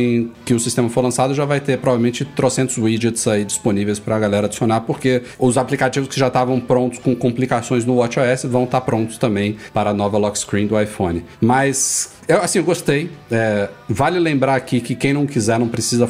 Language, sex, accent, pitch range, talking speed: Portuguese, male, Brazilian, 115-145 Hz, 200 wpm